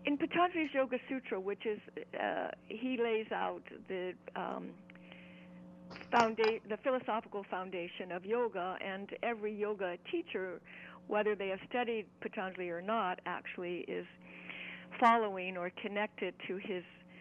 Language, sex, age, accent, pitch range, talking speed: English, female, 60-79, American, 180-235 Hz, 120 wpm